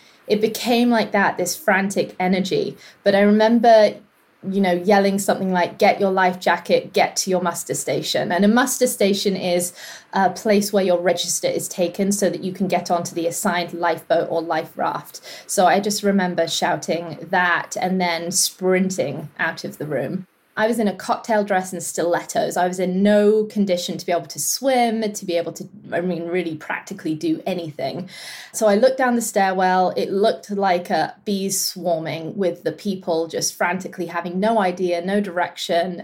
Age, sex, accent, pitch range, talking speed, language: 20-39, female, British, 175-205 Hz, 185 wpm, English